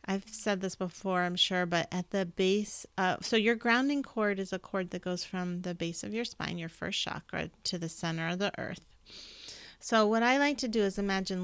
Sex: female